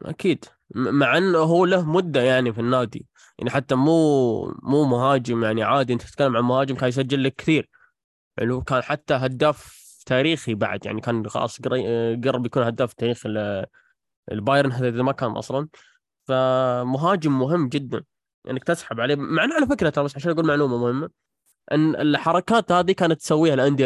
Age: 20-39